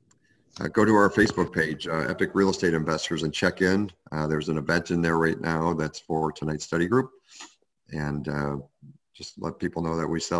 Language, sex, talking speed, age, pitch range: English, male, 210 wpm, 50-69, 80-95 Hz